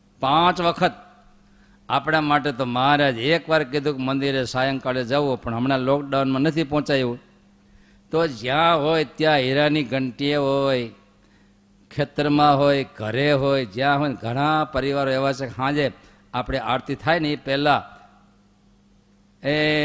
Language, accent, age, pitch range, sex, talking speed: Gujarati, native, 50-69, 120-150 Hz, male, 130 wpm